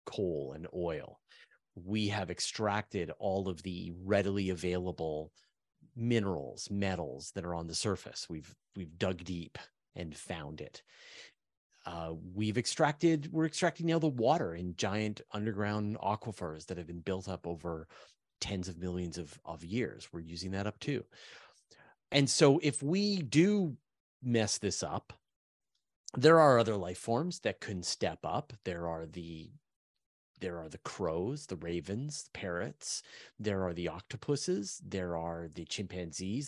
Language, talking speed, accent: English, 150 wpm, American